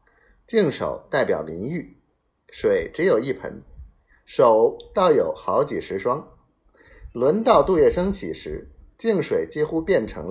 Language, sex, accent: Chinese, male, native